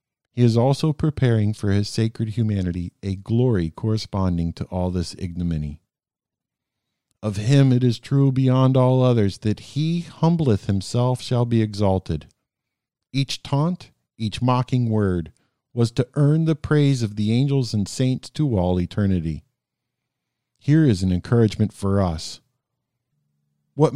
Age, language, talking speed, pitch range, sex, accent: 50-69, English, 140 wpm, 100-130 Hz, male, American